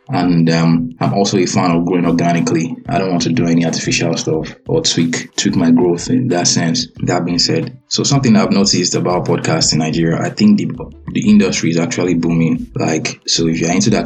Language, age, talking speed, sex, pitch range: English, 20-39, 215 wpm, male, 80-95 Hz